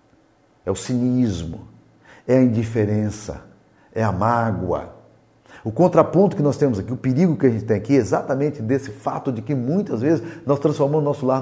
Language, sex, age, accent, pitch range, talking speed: Portuguese, male, 50-69, Brazilian, 110-135 Hz, 185 wpm